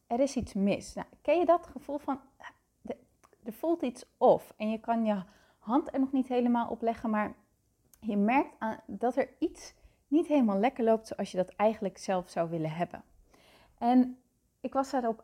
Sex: female